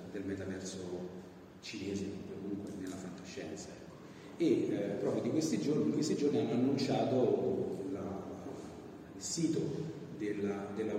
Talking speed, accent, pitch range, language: 120 wpm, native, 100-120 Hz, Italian